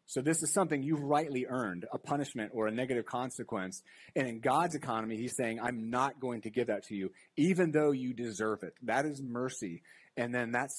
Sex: male